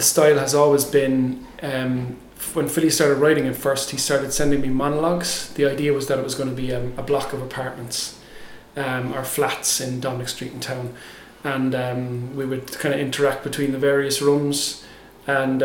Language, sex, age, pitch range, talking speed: English, male, 30-49, 130-150 Hz, 195 wpm